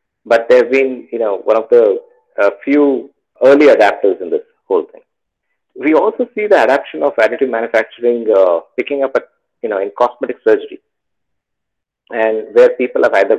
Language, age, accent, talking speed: English, 50-69, Indian, 170 wpm